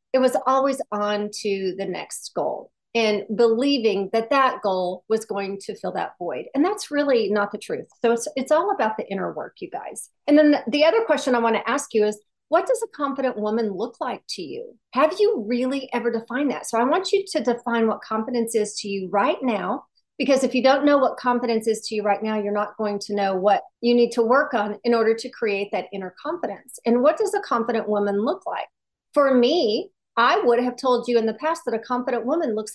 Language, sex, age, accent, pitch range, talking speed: English, female, 40-59, American, 210-270 Hz, 235 wpm